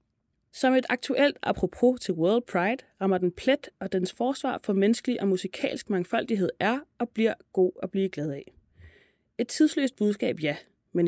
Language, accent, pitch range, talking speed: Danish, native, 180-245 Hz, 170 wpm